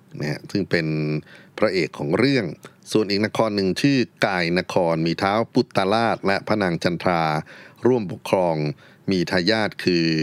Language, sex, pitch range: Thai, male, 85-110 Hz